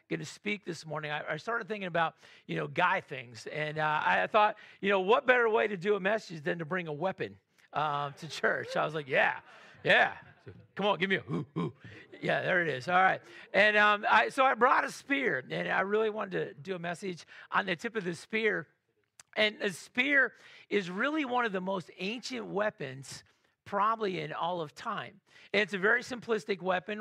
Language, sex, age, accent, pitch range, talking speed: English, male, 40-59, American, 170-215 Hz, 205 wpm